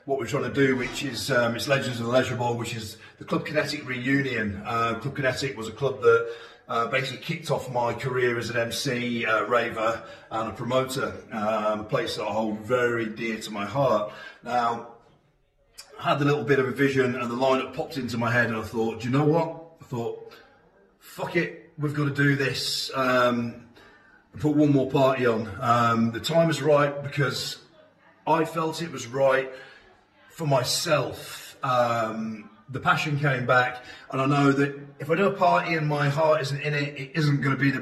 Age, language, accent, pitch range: 40-59, English, British, 120-145 Hz